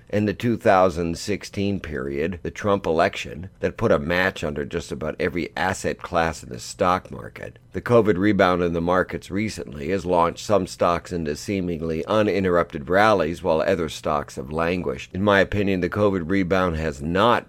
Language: English